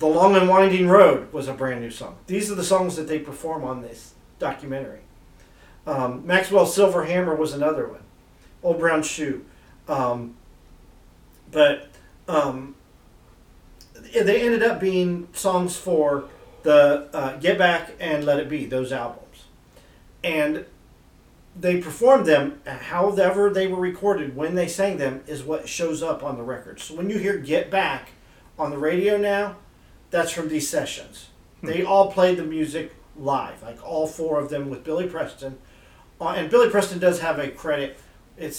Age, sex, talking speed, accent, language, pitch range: 40-59, male, 165 wpm, American, English, 130-180 Hz